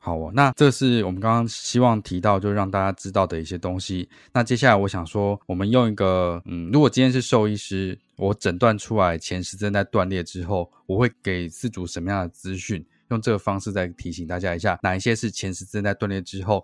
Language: Chinese